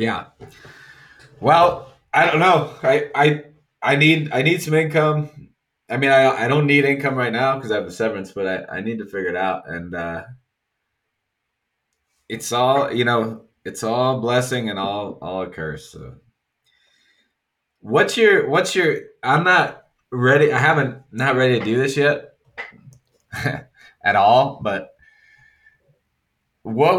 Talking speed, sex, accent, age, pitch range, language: 155 wpm, male, American, 20-39, 100-150 Hz, English